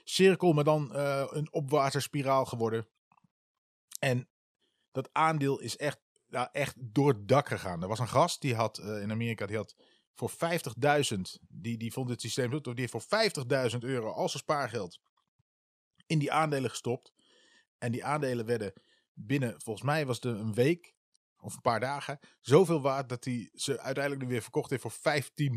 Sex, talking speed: male, 175 wpm